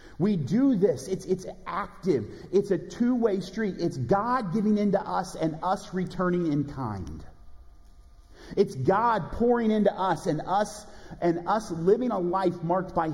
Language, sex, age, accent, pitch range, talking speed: English, male, 40-59, American, 120-190 Hz, 155 wpm